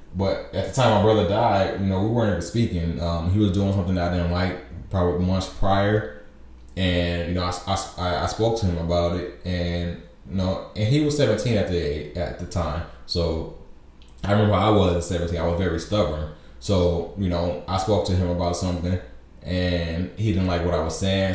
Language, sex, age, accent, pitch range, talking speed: English, male, 20-39, American, 85-95 Hz, 215 wpm